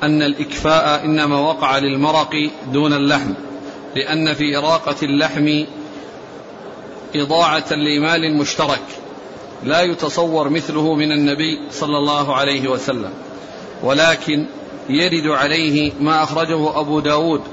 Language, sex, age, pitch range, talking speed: Arabic, male, 40-59, 145-165 Hz, 105 wpm